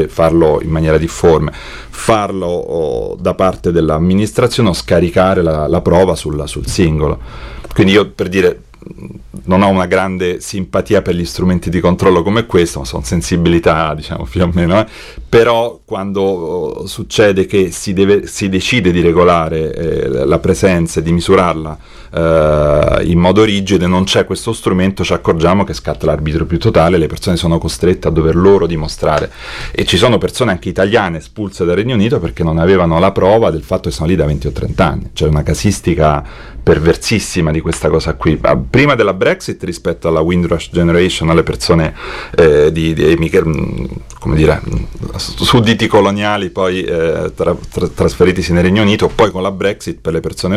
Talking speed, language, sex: 170 wpm, Italian, male